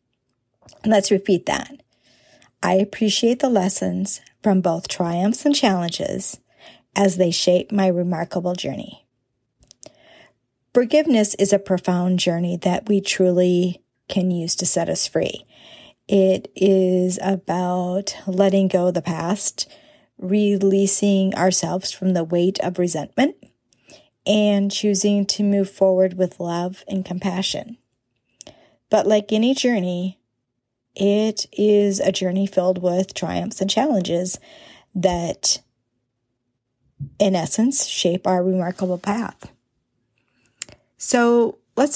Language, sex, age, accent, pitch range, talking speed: English, female, 40-59, American, 180-210 Hz, 115 wpm